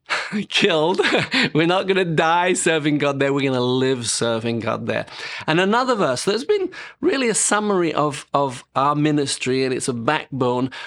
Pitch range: 135-180 Hz